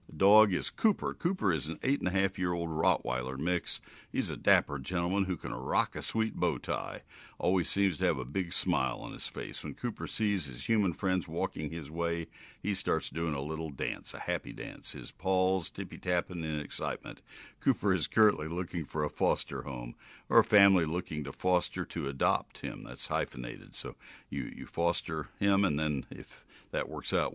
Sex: male